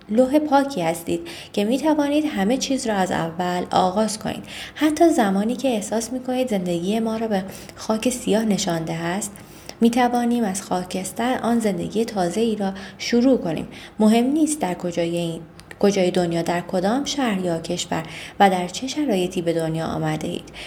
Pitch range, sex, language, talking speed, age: 175-250 Hz, female, Persian, 155 wpm, 20-39